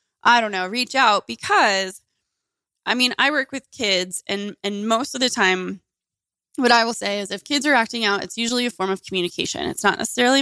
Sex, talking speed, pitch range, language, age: female, 215 wpm, 180-230 Hz, English, 20-39